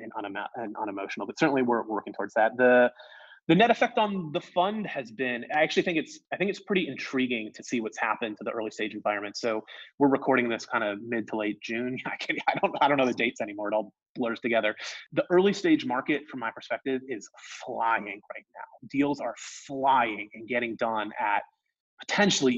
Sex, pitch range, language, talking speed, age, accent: male, 110-155 Hz, English, 205 wpm, 30-49, American